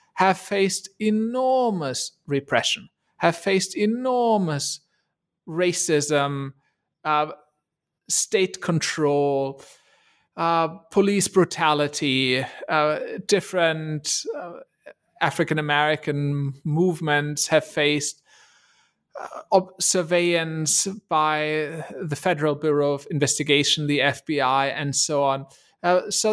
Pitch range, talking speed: 150-195 Hz, 80 wpm